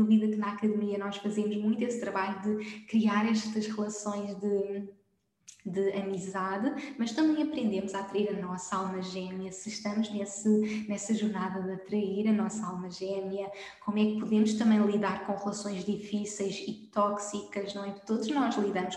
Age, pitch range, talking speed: 10-29, 200-215 Hz, 165 wpm